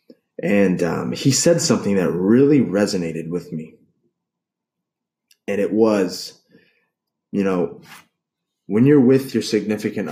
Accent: American